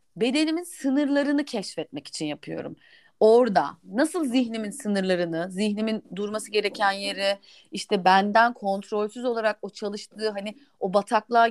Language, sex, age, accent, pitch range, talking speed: Turkish, female, 30-49, native, 205-280 Hz, 115 wpm